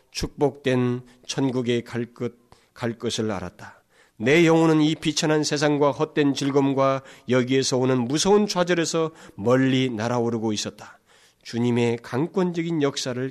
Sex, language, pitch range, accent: male, Korean, 115-155 Hz, native